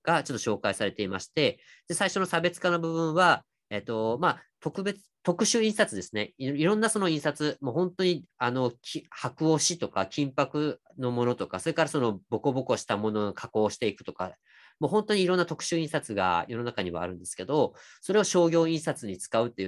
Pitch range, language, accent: 100-170 Hz, Japanese, native